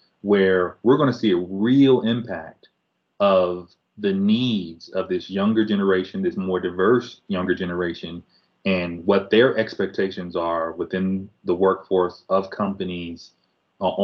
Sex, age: male, 30-49